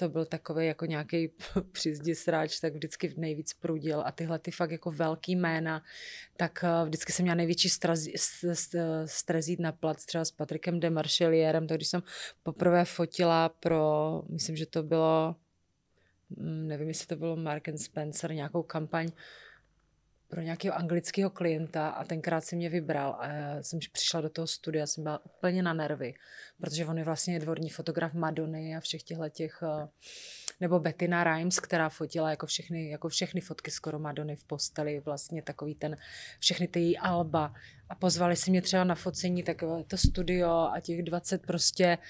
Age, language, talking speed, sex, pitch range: 30-49, Czech, 165 wpm, female, 160-180 Hz